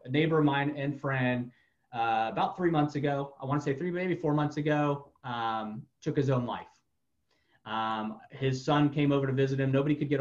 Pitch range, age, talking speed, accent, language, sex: 120-150 Hz, 30-49, 210 wpm, American, English, male